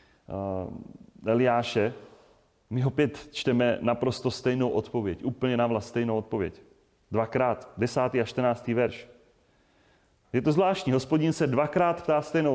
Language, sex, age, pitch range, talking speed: Czech, male, 30-49, 115-140 Hz, 120 wpm